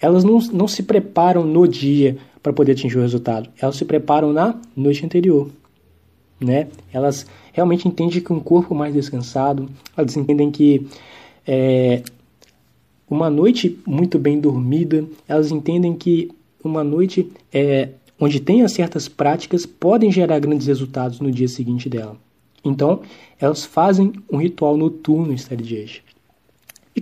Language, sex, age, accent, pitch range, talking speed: English, male, 20-39, Brazilian, 135-170 Hz, 140 wpm